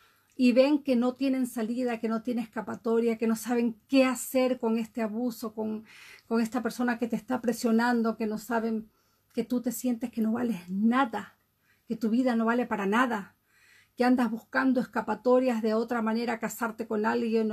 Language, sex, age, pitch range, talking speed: Spanish, female, 40-59, 225-255 Hz, 185 wpm